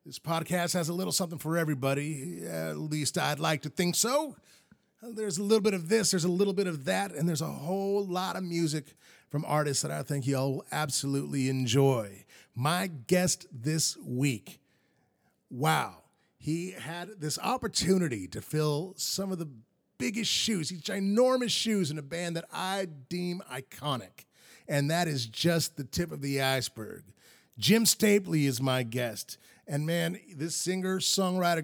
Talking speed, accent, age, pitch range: 165 wpm, American, 30-49, 145-185 Hz